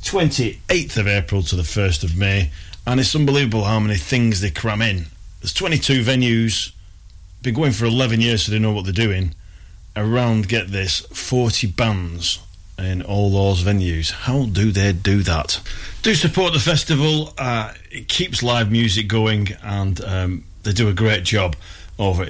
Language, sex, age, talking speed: English, male, 40-59, 170 wpm